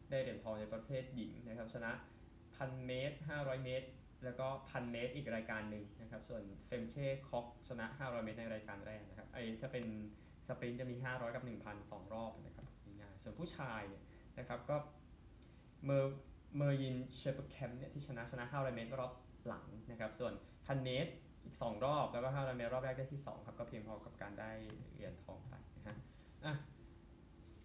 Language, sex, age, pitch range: Thai, male, 20-39, 115-135 Hz